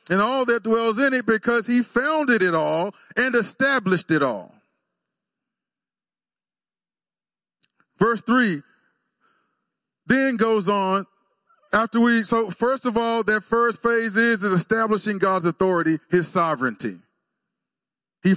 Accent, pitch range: American, 175-230 Hz